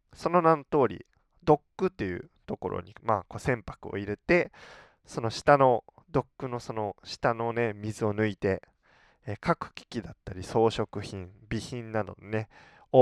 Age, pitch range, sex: 20-39, 95-130 Hz, male